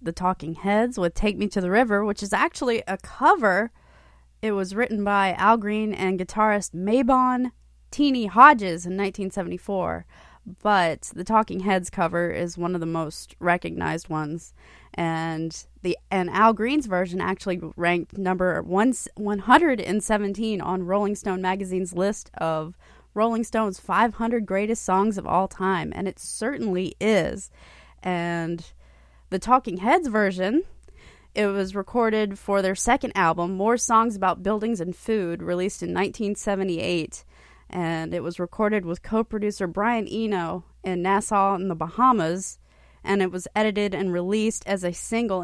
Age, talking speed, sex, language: 20-39, 150 wpm, female, English